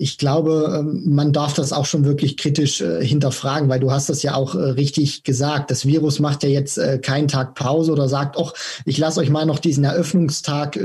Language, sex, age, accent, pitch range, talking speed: German, male, 20-39, German, 145-165 Hz, 210 wpm